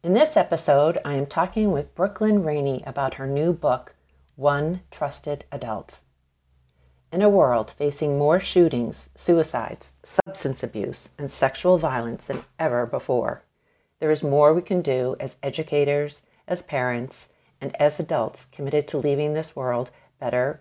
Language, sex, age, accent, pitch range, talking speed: English, female, 40-59, American, 115-160 Hz, 145 wpm